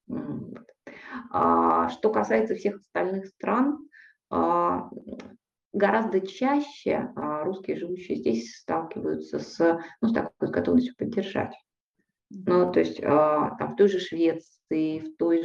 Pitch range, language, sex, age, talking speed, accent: 155-200 Hz, Russian, female, 20-39, 105 wpm, native